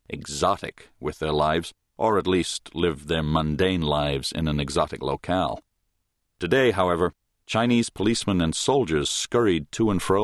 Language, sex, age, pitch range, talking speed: English, male, 40-59, 85-110 Hz, 145 wpm